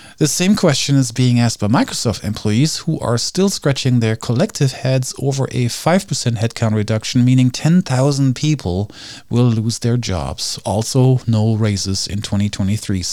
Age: 40-59